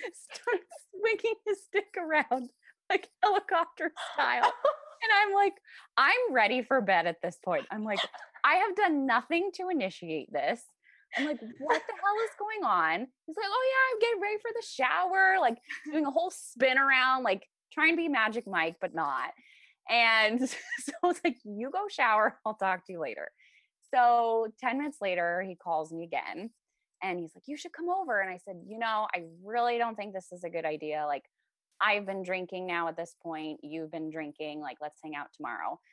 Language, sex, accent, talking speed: English, female, American, 195 wpm